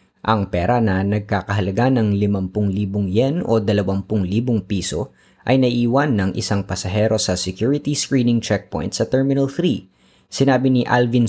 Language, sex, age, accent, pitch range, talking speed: Filipino, female, 20-39, native, 100-130 Hz, 140 wpm